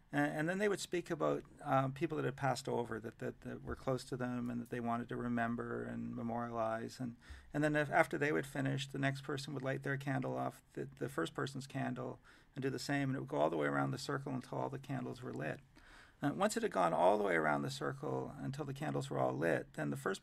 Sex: male